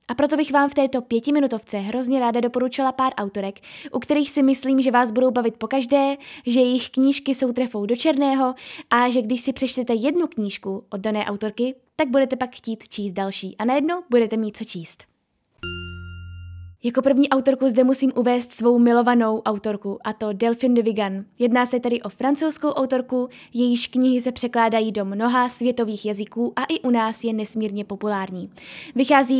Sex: female